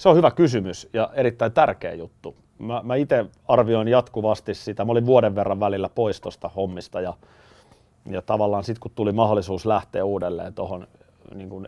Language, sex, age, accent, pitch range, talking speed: Finnish, male, 30-49, native, 100-120 Hz, 165 wpm